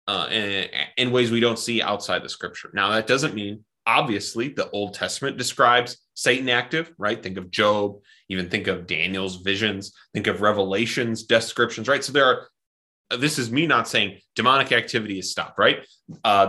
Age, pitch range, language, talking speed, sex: 30-49, 110-145 Hz, English, 180 wpm, male